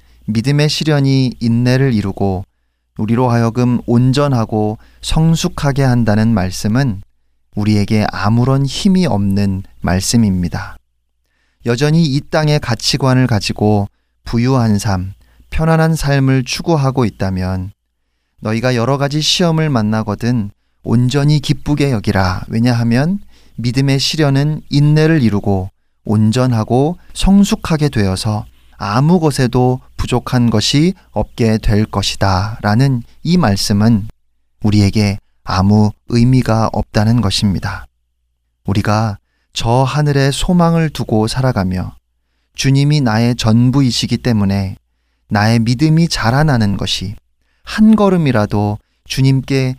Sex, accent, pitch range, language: male, native, 100-135 Hz, Korean